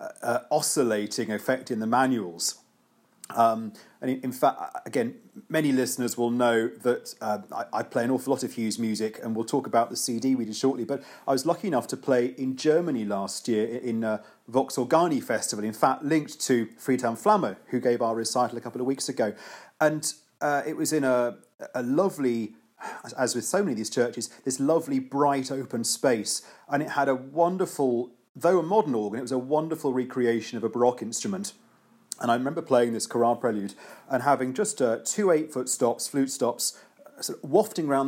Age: 40-59